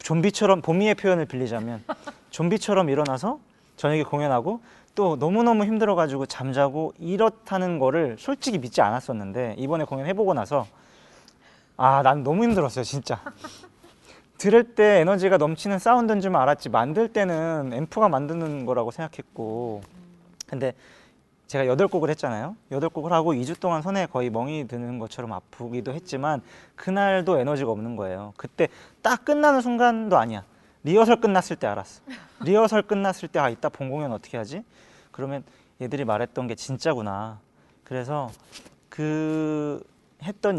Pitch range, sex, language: 130-200 Hz, male, Korean